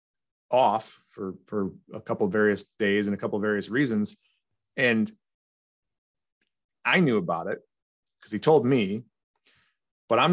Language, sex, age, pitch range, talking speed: English, male, 30-49, 105-130 Hz, 145 wpm